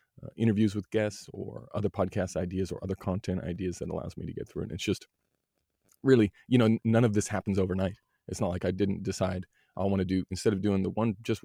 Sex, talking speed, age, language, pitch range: male, 235 wpm, 30-49, English, 90-100 Hz